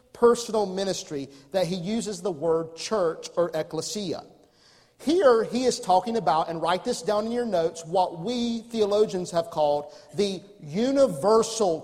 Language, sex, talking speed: English, male, 145 wpm